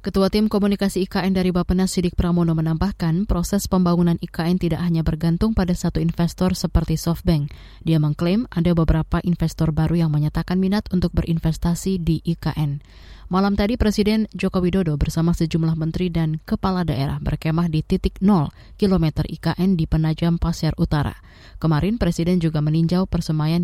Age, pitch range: 20-39, 155-185 Hz